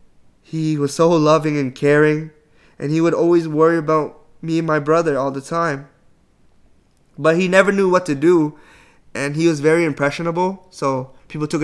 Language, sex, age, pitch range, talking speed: English, male, 20-39, 135-170 Hz, 175 wpm